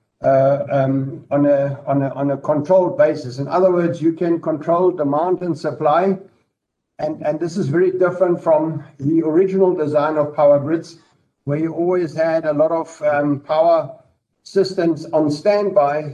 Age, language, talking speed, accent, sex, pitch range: 60-79, English, 160 wpm, German, male, 145-170 Hz